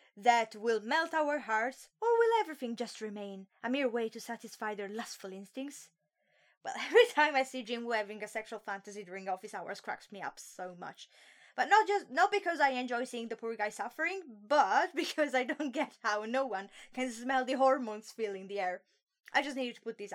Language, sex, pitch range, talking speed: English, female, 220-340 Hz, 210 wpm